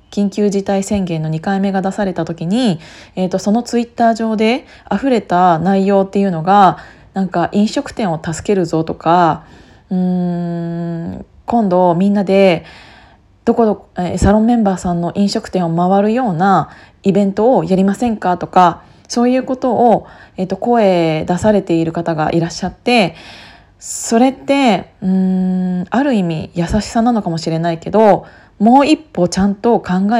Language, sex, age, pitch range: Japanese, female, 20-39, 175-220 Hz